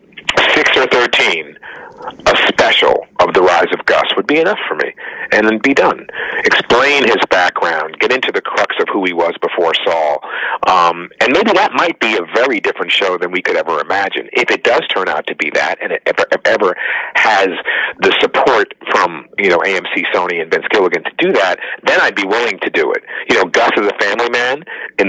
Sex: male